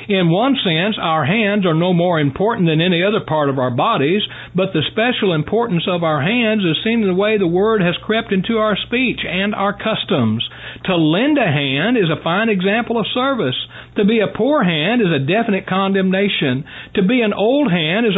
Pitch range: 170-225 Hz